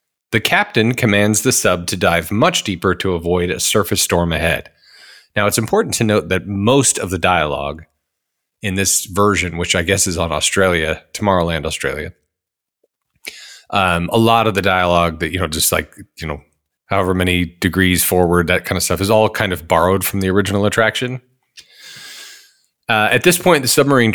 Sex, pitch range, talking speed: male, 95-135 Hz, 180 wpm